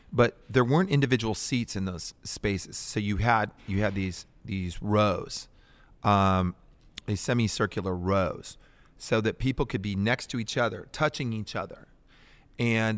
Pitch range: 95-120 Hz